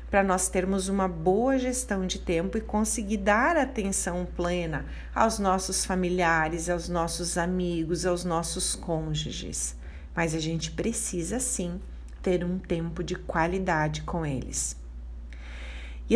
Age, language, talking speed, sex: 40-59, Portuguese, 130 wpm, female